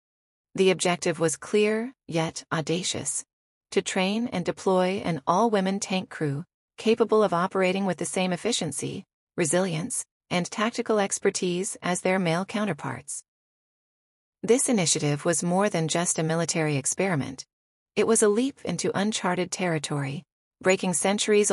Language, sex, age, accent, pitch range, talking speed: English, female, 30-49, American, 160-200 Hz, 135 wpm